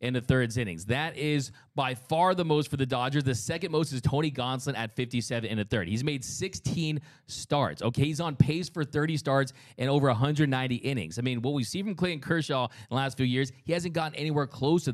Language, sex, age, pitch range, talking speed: English, male, 20-39, 125-155 Hz, 235 wpm